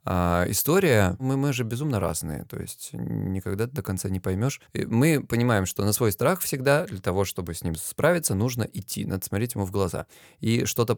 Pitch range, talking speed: 100-125 Hz, 190 wpm